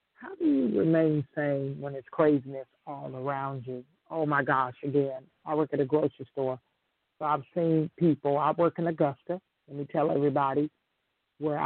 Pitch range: 140-155 Hz